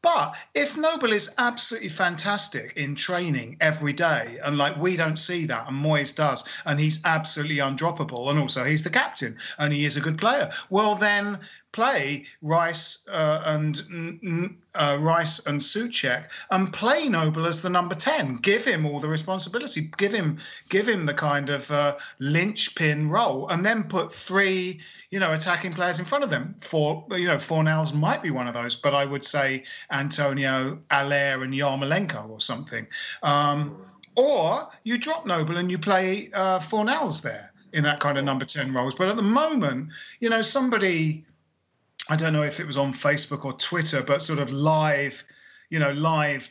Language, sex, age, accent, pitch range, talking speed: English, male, 40-59, British, 145-190 Hz, 180 wpm